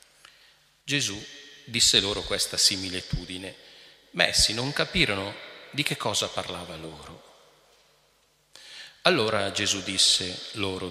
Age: 40-59